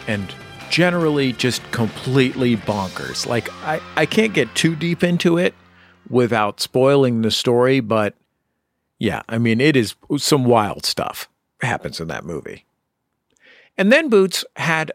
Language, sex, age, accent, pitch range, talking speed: English, male, 50-69, American, 105-150 Hz, 140 wpm